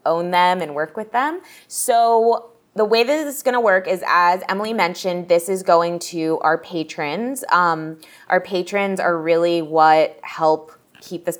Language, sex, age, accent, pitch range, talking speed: English, female, 20-39, American, 160-195 Hz, 180 wpm